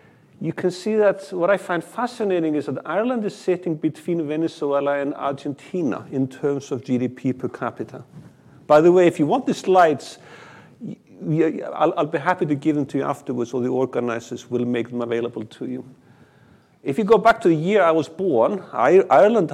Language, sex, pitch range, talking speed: English, male, 130-175 Hz, 185 wpm